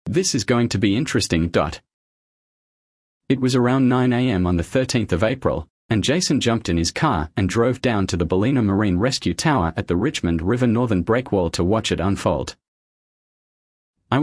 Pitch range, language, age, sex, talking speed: 90-125 Hz, English, 40-59, male, 175 wpm